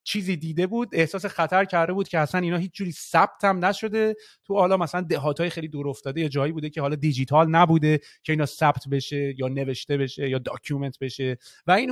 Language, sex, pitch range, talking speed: Persian, male, 140-185 Hz, 195 wpm